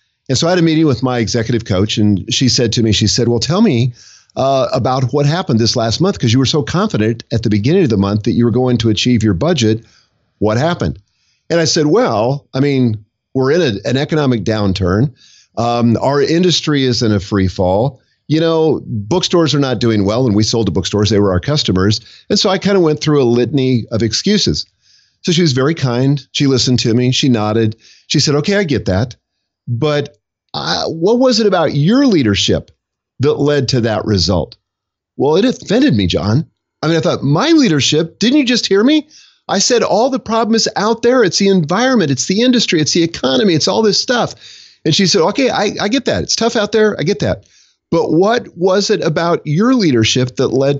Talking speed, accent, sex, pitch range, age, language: 220 wpm, American, male, 115-175 Hz, 50-69, English